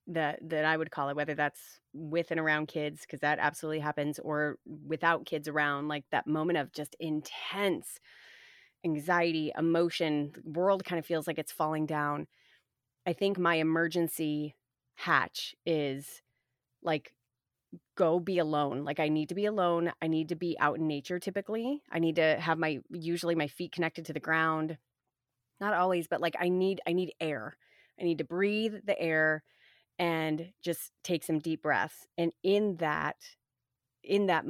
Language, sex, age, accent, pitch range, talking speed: English, female, 30-49, American, 150-170 Hz, 170 wpm